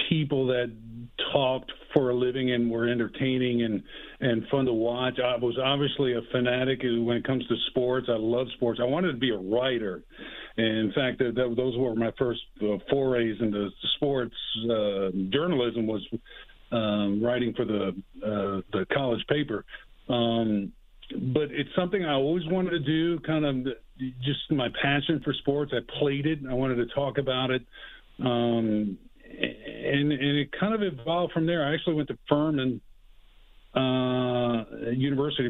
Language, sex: English, male